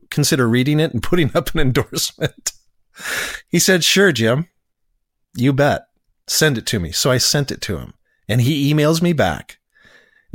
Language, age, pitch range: English, 40-59, 105-135 Hz